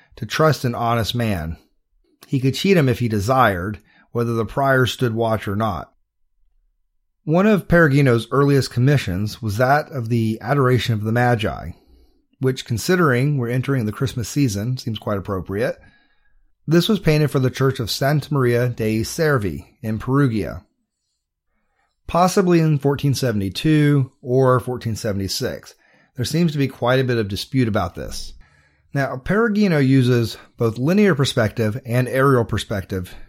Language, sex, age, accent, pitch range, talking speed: English, male, 30-49, American, 110-140 Hz, 145 wpm